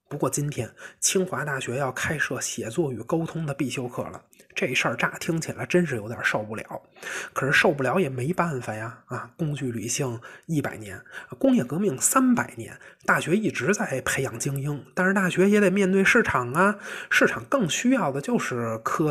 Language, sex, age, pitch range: Chinese, male, 20-39, 130-185 Hz